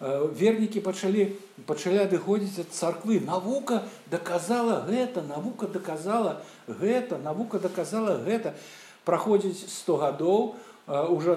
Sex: male